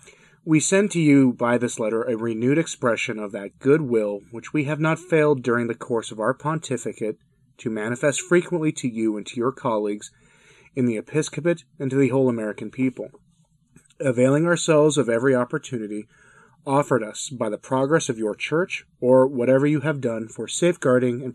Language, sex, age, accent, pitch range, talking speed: English, male, 30-49, American, 115-150 Hz, 175 wpm